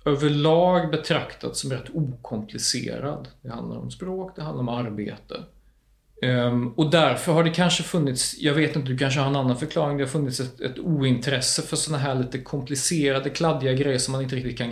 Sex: male